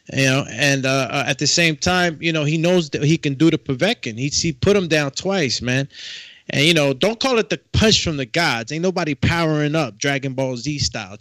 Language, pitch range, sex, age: English, 130-160 Hz, male, 20-39